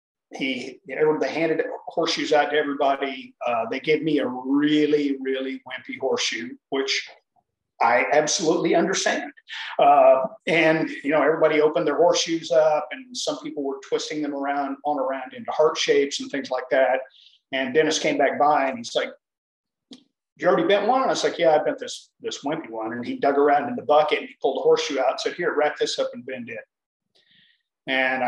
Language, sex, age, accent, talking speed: English, male, 50-69, American, 190 wpm